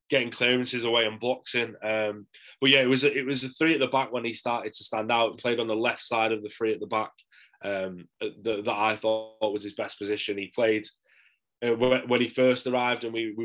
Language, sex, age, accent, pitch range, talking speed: English, male, 10-29, British, 105-120 Hz, 245 wpm